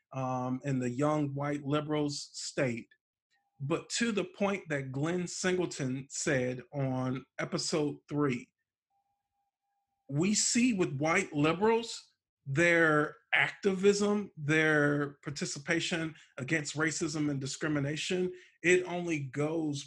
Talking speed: 105 wpm